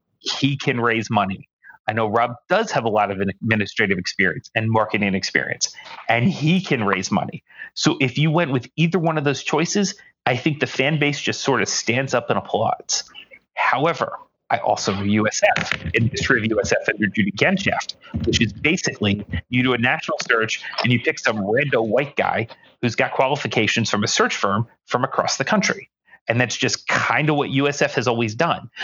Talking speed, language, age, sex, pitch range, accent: 190 wpm, English, 30-49, male, 115-150 Hz, American